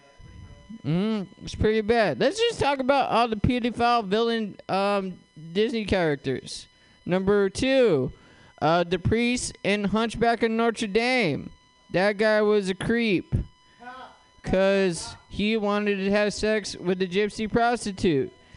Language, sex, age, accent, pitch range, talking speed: English, male, 20-39, American, 175-230 Hz, 130 wpm